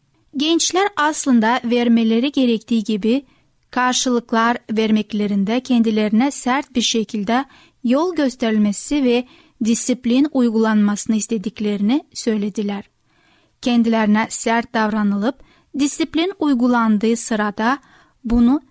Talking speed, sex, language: 80 wpm, female, Turkish